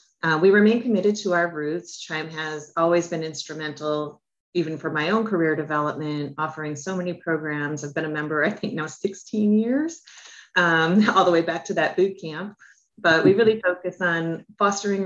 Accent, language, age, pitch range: American, English, 30-49, 155-185 Hz